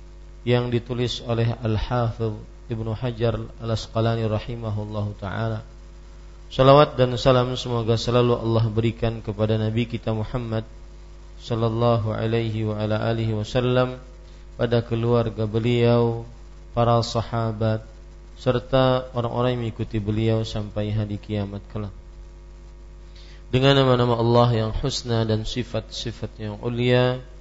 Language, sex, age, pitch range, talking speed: Malay, male, 40-59, 110-120 Hz, 110 wpm